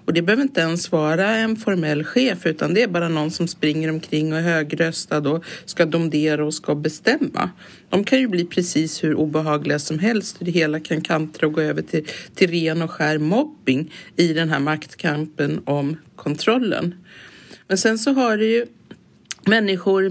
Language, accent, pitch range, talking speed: English, Swedish, 165-225 Hz, 180 wpm